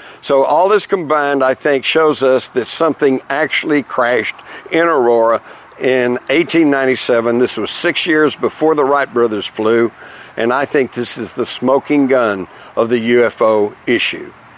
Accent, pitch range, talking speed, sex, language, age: American, 115-130 Hz, 150 wpm, male, English, 60-79